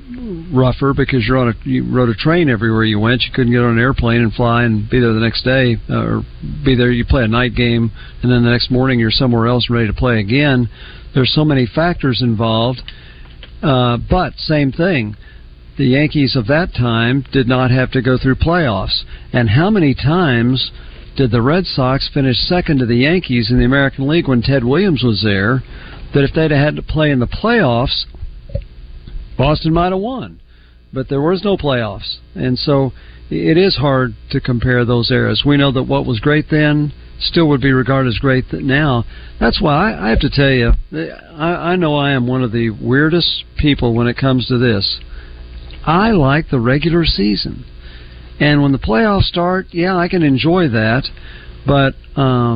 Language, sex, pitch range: English, male, 115-145 Hz